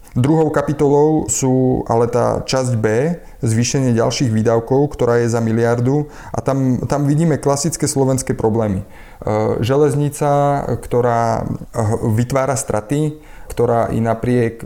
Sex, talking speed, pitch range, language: male, 115 wpm, 105-125 Hz, Slovak